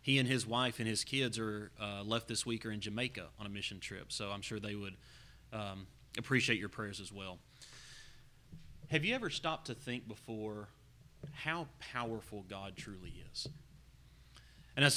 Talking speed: 175 wpm